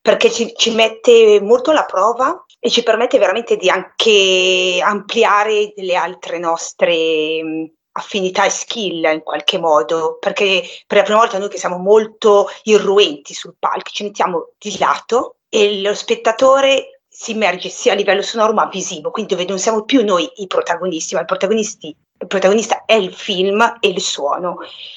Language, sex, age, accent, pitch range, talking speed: Italian, female, 30-49, native, 175-220 Hz, 165 wpm